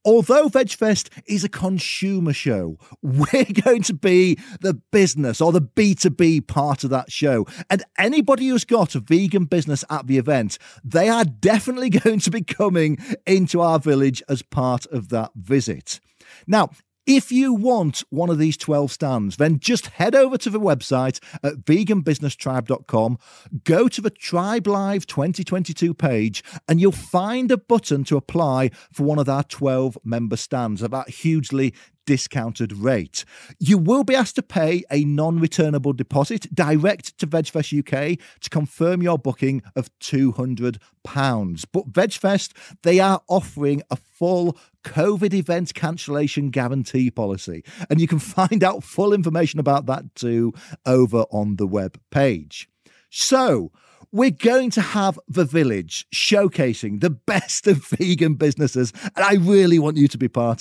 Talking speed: 155 wpm